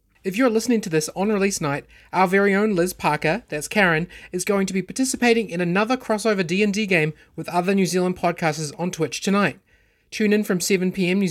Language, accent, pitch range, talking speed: English, Australian, 160-205 Hz, 200 wpm